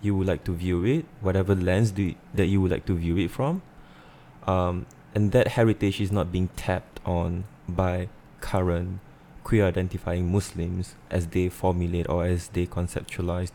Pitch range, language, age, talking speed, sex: 85-95 Hz, English, 20-39, 175 wpm, male